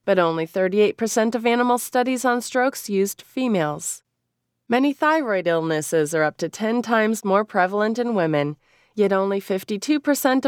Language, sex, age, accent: English, female, 30-49, American